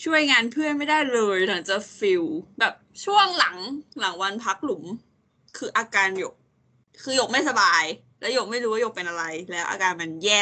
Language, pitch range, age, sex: Thai, 185-255 Hz, 20-39, female